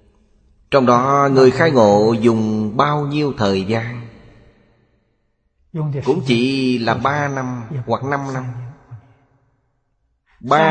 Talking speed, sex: 120 wpm, male